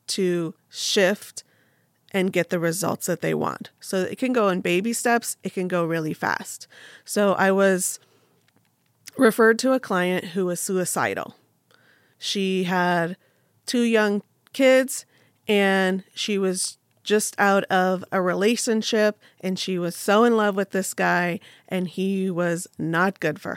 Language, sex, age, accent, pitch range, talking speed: English, female, 30-49, American, 185-225 Hz, 150 wpm